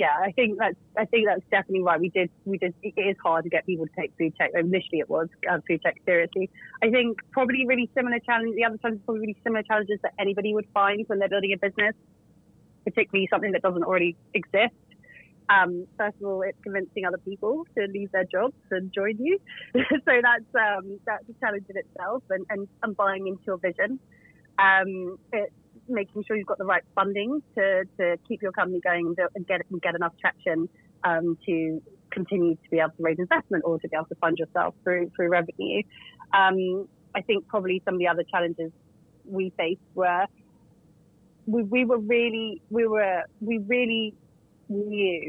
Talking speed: 195 wpm